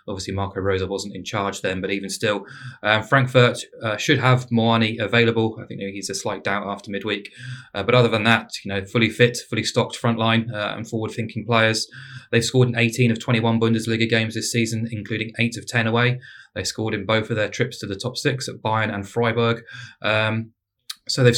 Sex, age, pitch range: male, 20-39, 100-120 Hz